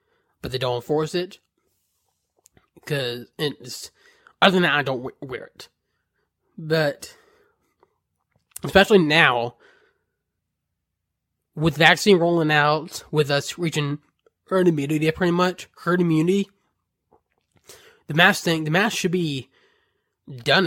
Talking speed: 110 wpm